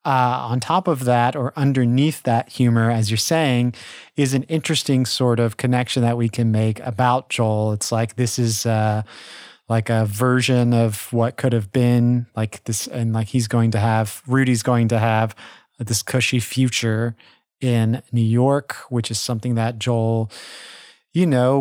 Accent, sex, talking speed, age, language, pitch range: American, male, 170 wpm, 30-49, English, 115-140 Hz